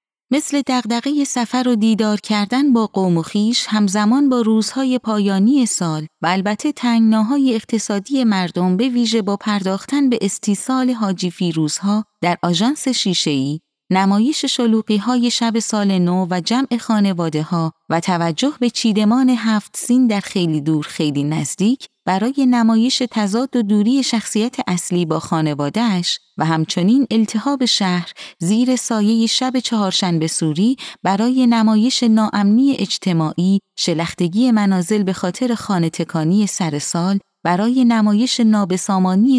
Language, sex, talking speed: Persian, female, 130 wpm